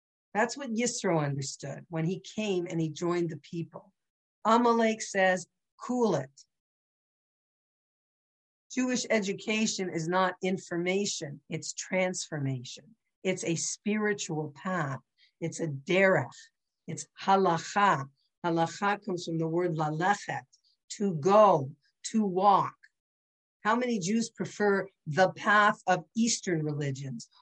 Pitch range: 165-225 Hz